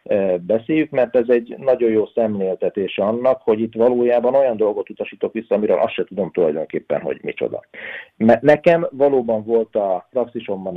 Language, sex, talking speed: Hungarian, male, 155 wpm